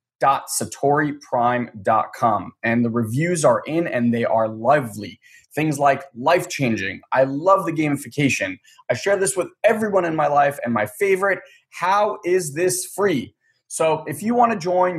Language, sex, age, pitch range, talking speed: English, male, 20-39, 125-170 Hz, 150 wpm